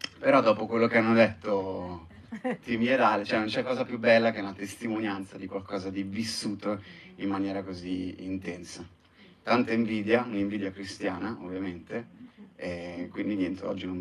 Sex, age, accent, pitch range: male, 30-49, native, 95-150 Hz